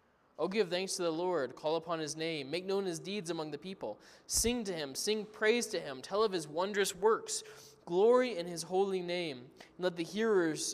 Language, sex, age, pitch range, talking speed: English, male, 20-39, 150-190 Hz, 220 wpm